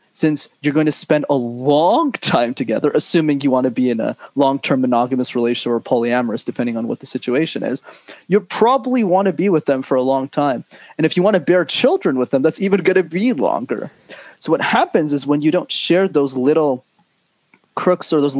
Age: 20-39